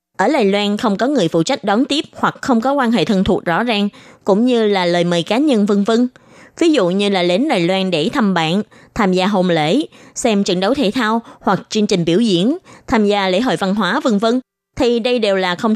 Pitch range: 185-255 Hz